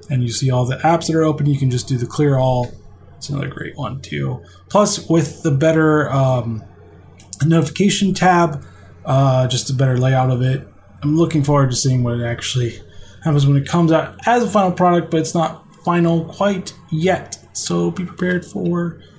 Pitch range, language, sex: 130-180 Hz, English, male